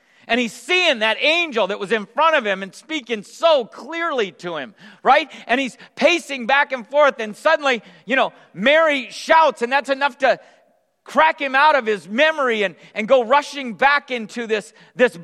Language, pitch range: English, 225-300 Hz